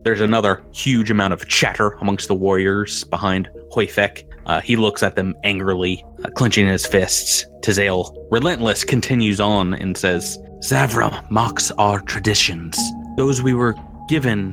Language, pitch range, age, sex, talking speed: English, 90-120 Hz, 30-49, male, 140 wpm